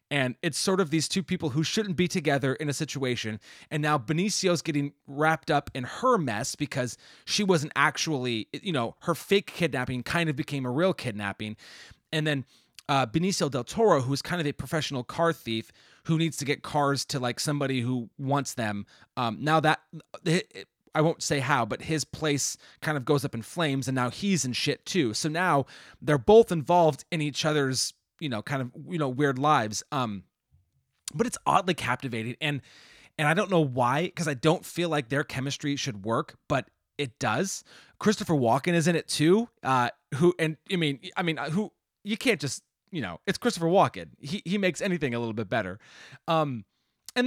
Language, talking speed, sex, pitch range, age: English, 195 wpm, male, 130-170 Hz, 30-49